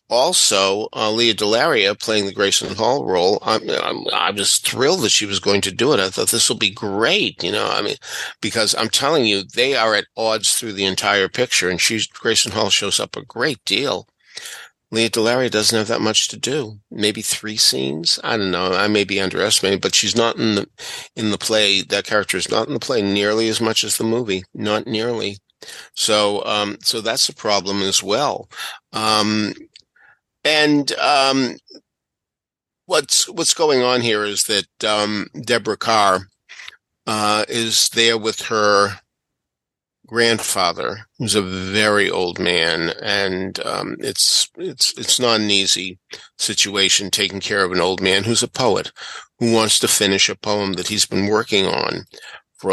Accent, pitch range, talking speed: American, 100-115 Hz, 175 wpm